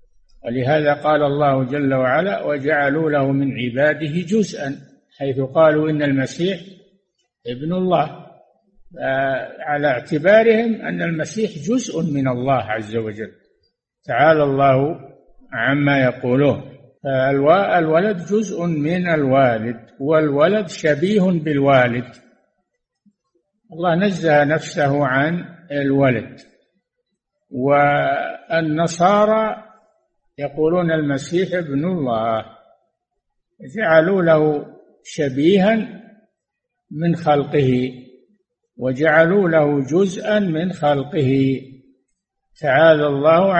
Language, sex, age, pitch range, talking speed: Arabic, male, 60-79, 140-190 Hz, 80 wpm